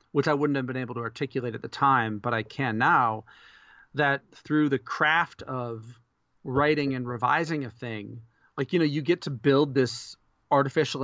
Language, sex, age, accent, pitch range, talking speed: English, male, 40-59, American, 120-140 Hz, 185 wpm